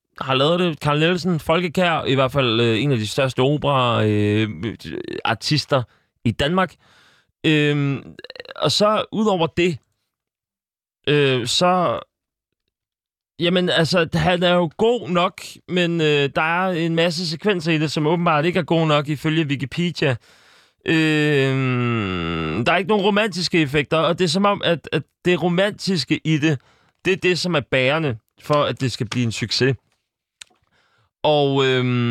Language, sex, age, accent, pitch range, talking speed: Danish, male, 30-49, native, 120-170 Hz, 140 wpm